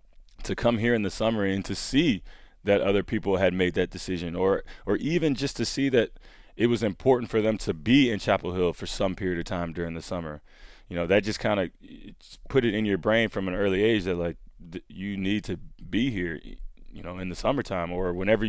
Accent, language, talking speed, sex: American, English, 230 wpm, male